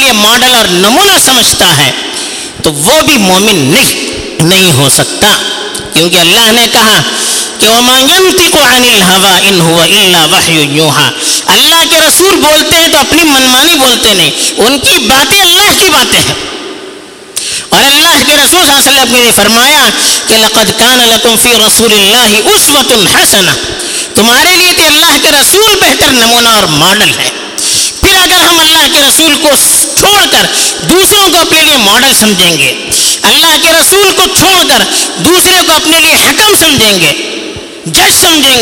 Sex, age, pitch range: female, 50-69, 220-335 Hz